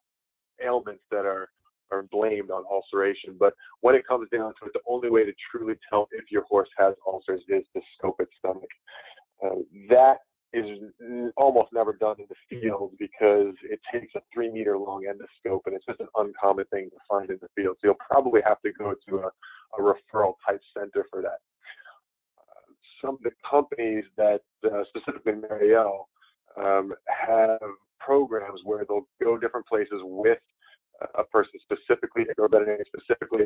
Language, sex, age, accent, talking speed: English, male, 30-49, American, 170 wpm